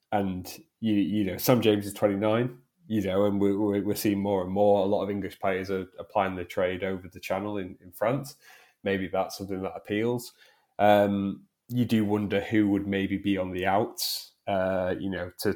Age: 20-39